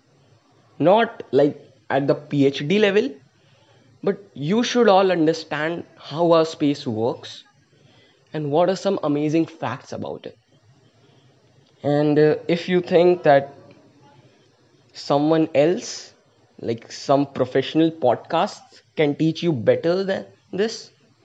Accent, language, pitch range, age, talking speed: Indian, English, 130-160 Hz, 20-39, 115 wpm